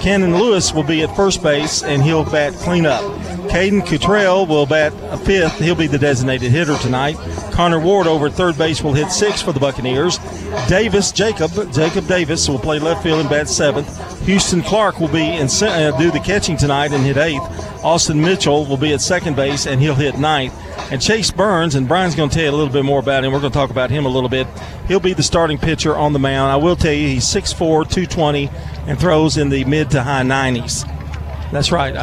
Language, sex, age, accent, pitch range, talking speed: English, male, 40-59, American, 140-180 Hz, 225 wpm